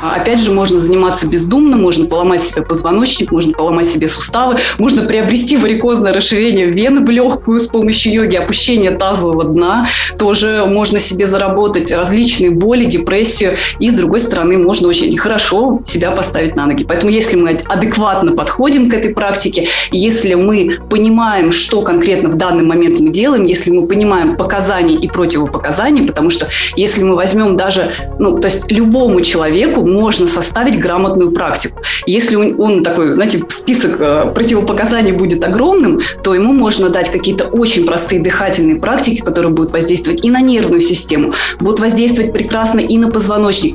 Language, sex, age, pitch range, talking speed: Russian, female, 20-39, 180-230 Hz, 155 wpm